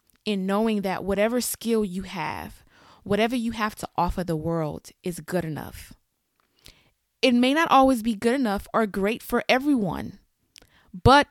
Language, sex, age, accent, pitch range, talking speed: English, female, 20-39, American, 190-230 Hz, 155 wpm